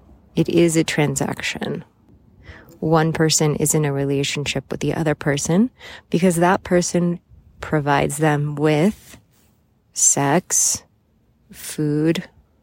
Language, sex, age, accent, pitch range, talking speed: English, female, 30-49, American, 145-170 Hz, 105 wpm